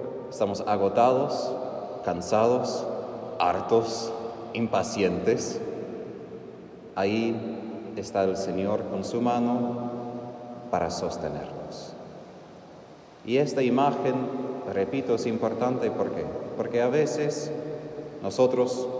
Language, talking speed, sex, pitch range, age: Spanish, 80 wpm, male, 100-130 Hz, 30-49